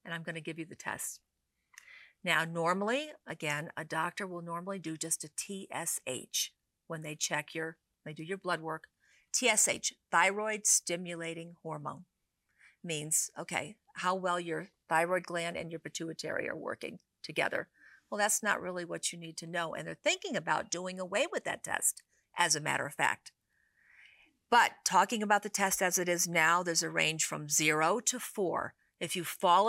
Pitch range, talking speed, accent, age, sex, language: 160-195 Hz, 175 wpm, American, 50-69, female, English